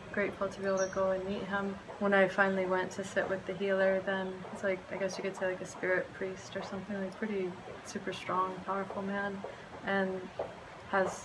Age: 20-39